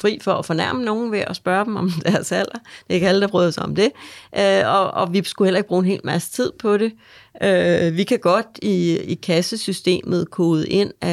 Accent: native